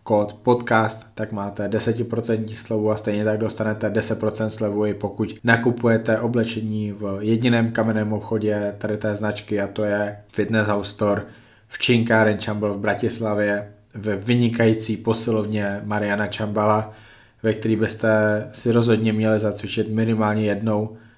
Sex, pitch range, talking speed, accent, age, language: male, 105-115 Hz, 135 wpm, native, 20-39, Czech